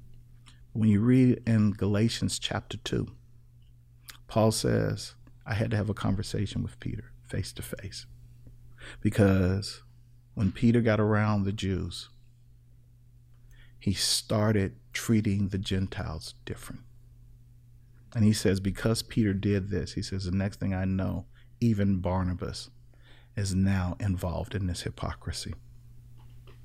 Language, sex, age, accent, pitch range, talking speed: English, male, 50-69, American, 95-120 Hz, 125 wpm